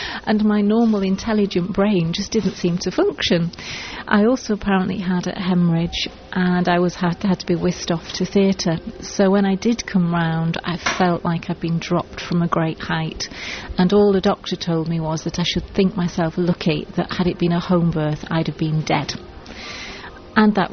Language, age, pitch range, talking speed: English, 40-59, 170-195 Hz, 205 wpm